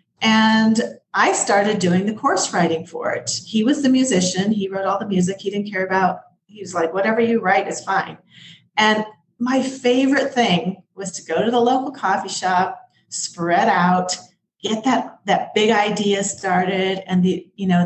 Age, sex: 40-59, female